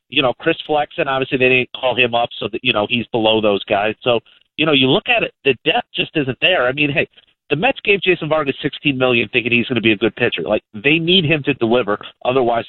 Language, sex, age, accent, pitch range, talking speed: English, male, 40-59, American, 115-150 Hz, 260 wpm